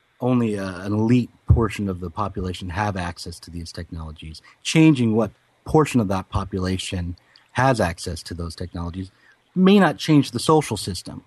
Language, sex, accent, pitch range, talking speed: English, male, American, 95-125 Hz, 155 wpm